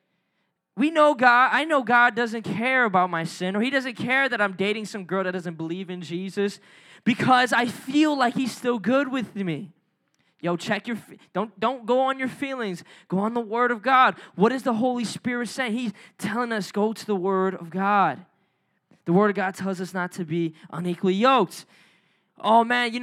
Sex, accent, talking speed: male, American, 205 wpm